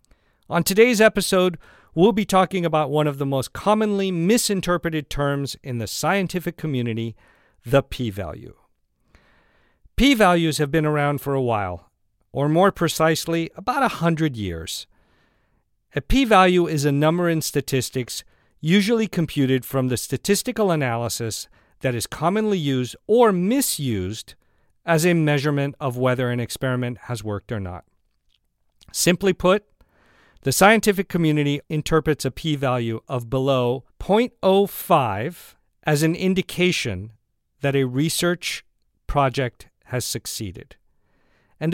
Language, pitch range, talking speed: English, 120-180 Hz, 120 wpm